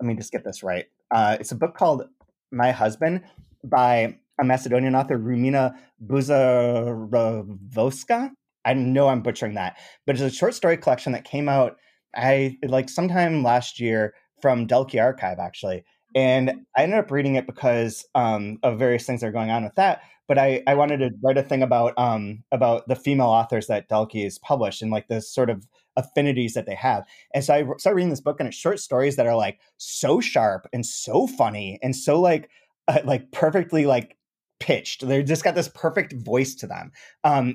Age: 30-49